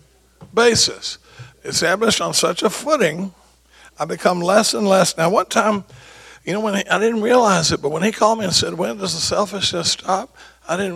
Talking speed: 190 wpm